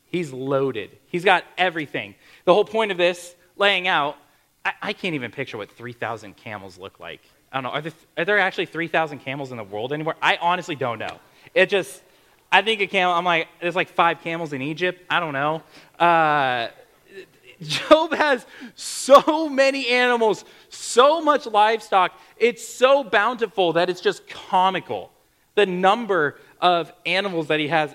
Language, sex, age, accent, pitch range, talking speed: English, male, 30-49, American, 145-190 Hz, 170 wpm